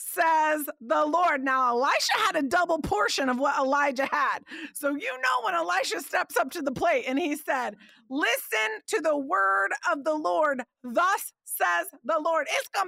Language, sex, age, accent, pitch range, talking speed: English, female, 40-59, American, 190-300 Hz, 180 wpm